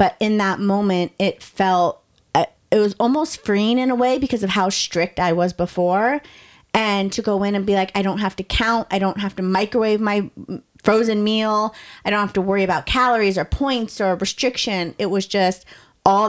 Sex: female